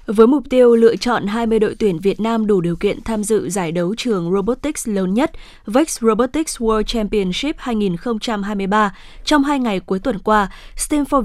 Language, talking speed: Vietnamese, 175 wpm